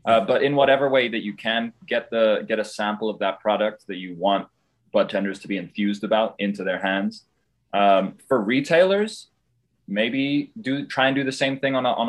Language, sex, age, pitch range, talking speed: English, male, 20-39, 100-125 Hz, 210 wpm